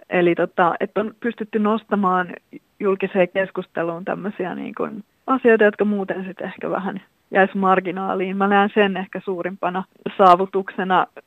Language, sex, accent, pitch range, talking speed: Finnish, female, native, 180-200 Hz, 130 wpm